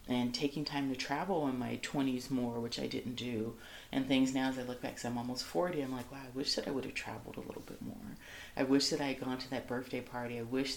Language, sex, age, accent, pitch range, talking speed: English, female, 30-49, American, 120-140 Hz, 280 wpm